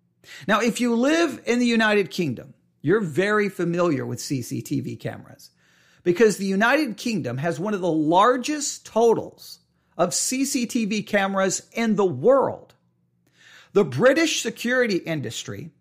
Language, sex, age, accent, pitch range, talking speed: English, male, 40-59, American, 150-240 Hz, 130 wpm